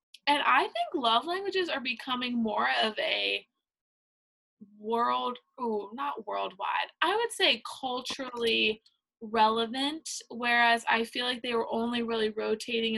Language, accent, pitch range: English, American, 220-280 Hz